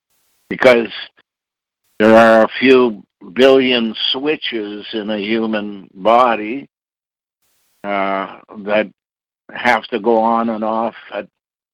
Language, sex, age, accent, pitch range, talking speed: English, male, 60-79, American, 100-115 Hz, 100 wpm